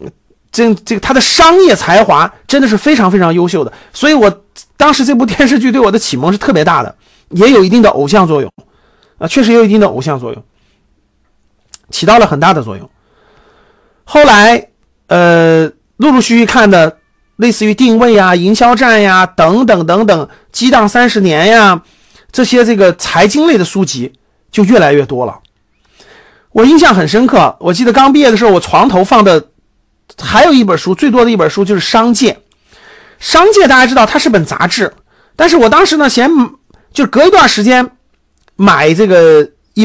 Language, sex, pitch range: Chinese, male, 180-255 Hz